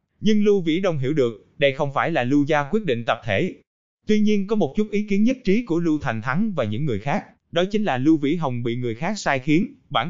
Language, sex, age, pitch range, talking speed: Vietnamese, male, 20-39, 130-185 Hz, 265 wpm